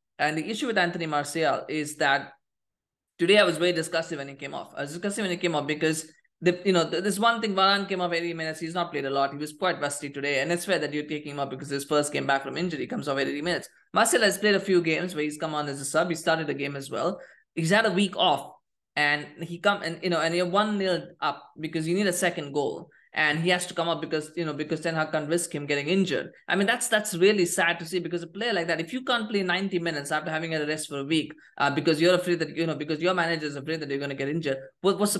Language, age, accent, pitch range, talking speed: English, 20-39, Indian, 150-180 Hz, 290 wpm